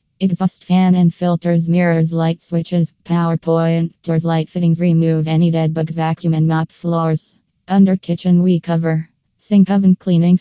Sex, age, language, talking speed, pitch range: female, 20-39, English, 155 wpm, 165-180 Hz